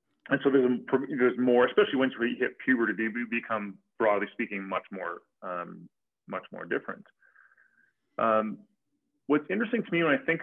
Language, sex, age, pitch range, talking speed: English, male, 30-49, 100-125 Hz, 160 wpm